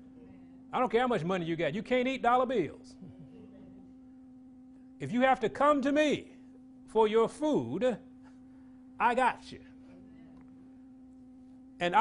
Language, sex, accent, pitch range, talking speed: English, male, American, 210-260 Hz, 135 wpm